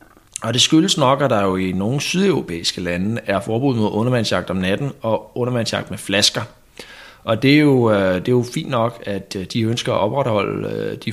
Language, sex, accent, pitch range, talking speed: Danish, male, native, 105-145 Hz, 195 wpm